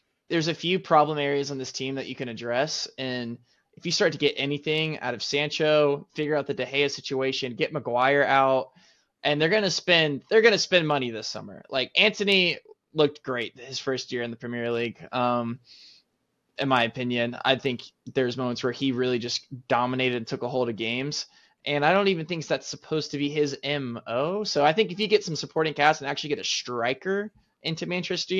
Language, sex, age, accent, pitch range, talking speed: English, male, 20-39, American, 125-155 Hz, 210 wpm